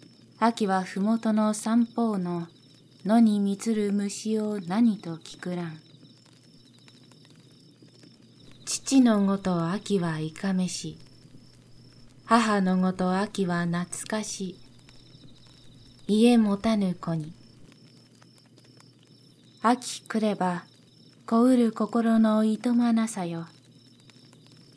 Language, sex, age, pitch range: Japanese, female, 20-39, 145-215 Hz